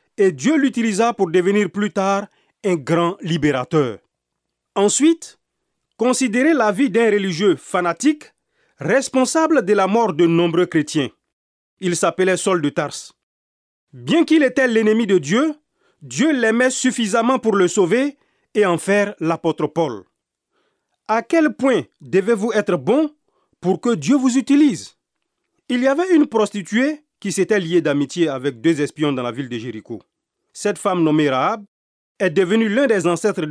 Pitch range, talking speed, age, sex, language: 175-275 Hz, 150 wpm, 40-59, male, French